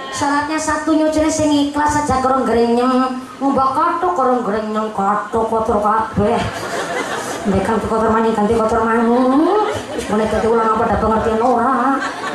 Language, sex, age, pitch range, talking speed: Indonesian, male, 20-39, 210-285 Hz, 150 wpm